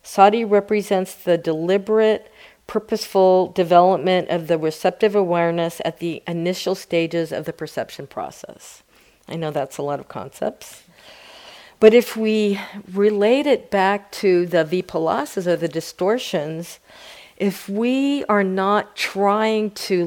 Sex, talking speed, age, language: female, 130 wpm, 50-69, English